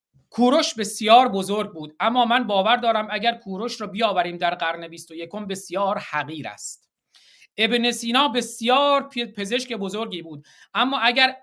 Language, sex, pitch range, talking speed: Persian, male, 175-235 Hz, 145 wpm